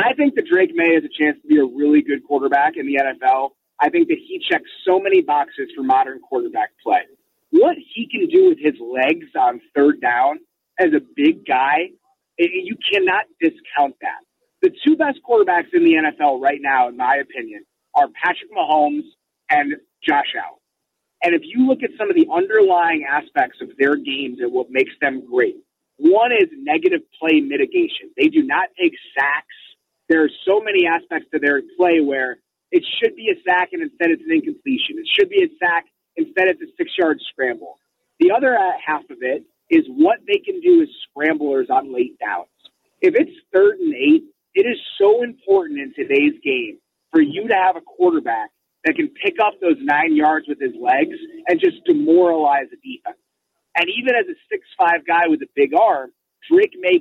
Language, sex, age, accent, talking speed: English, male, 30-49, American, 195 wpm